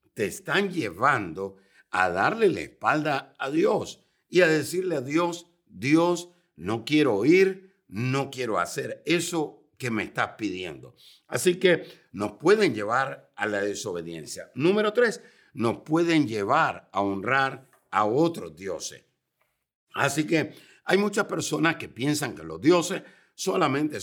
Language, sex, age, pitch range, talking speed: Spanish, male, 60-79, 125-185 Hz, 135 wpm